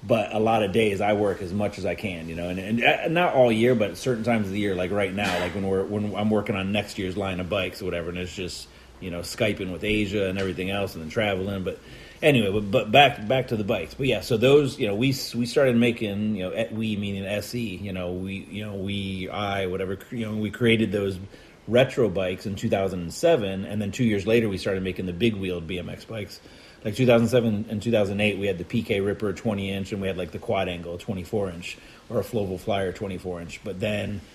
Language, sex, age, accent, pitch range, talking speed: English, male, 30-49, American, 95-115 Hz, 255 wpm